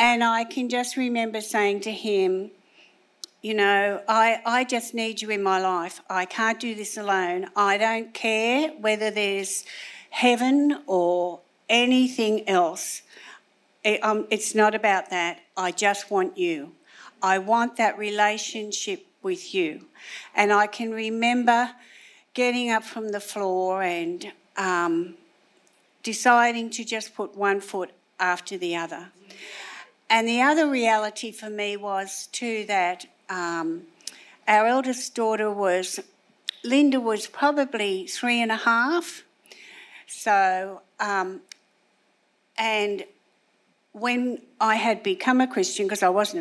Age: 60-79